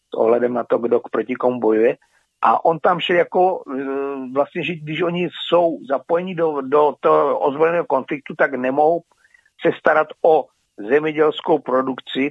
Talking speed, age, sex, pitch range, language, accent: 150 wpm, 50-69, male, 140-180 Hz, Czech, native